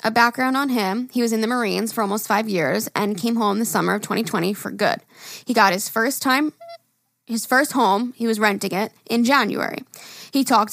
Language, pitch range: English, 205-245 Hz